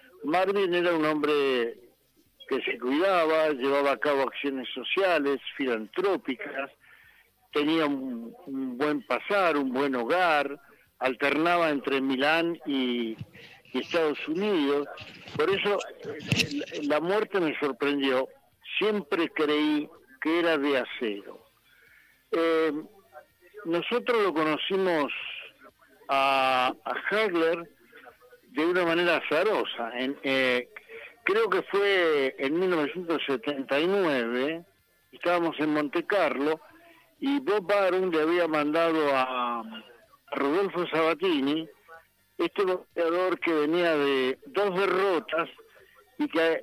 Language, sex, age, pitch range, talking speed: Spanish, male, 60-79, 140-180 Hz, 100 wpm